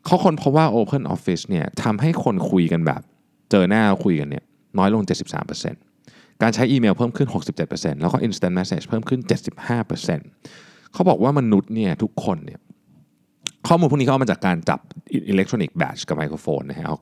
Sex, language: male, Thai